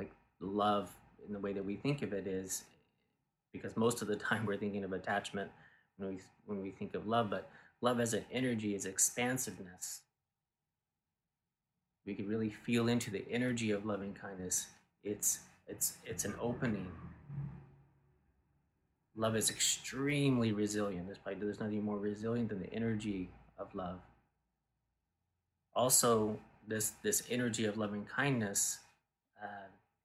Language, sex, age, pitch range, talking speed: English, male, 30-49, 100-115 Hz, 140 wpm